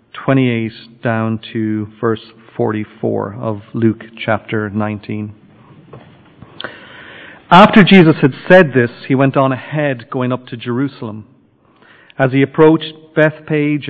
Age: 40-59